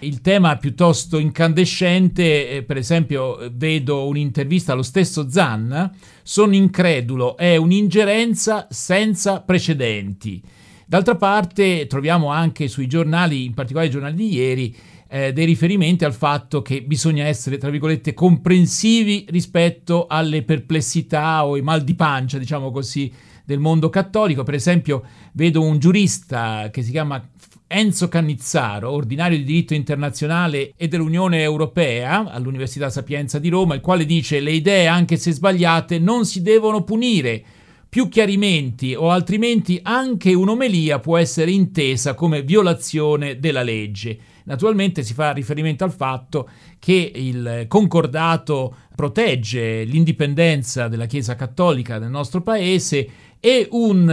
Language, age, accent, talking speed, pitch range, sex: Italian, 50-69, native, 130 wpm, 140-180 Hz, male